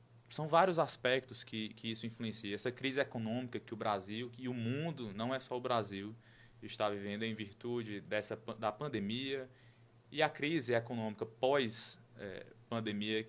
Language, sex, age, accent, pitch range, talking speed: Portuguese, male, 20-39, Brazilian, 110-130 Hz, 155 wpm